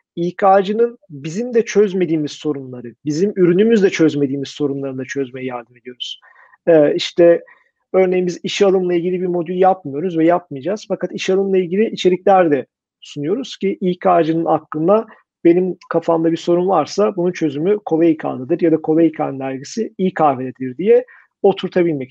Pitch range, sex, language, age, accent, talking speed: 160-195 Hz, male, Turkish, 40-59, native, 135 wpm